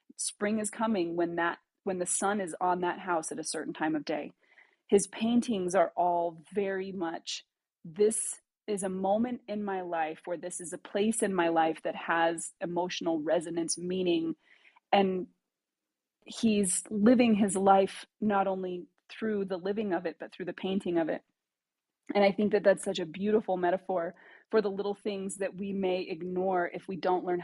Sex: female